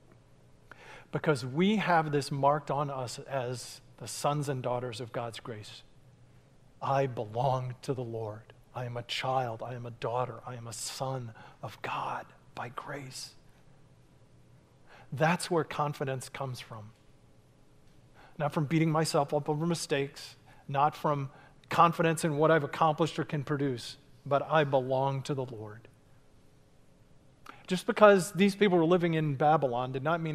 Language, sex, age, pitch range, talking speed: English, male, 40-59, 125-150 Hz, 150 wpm